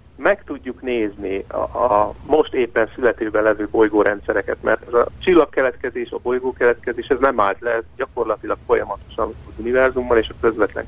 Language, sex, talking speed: Hungarian, male, 155 wpm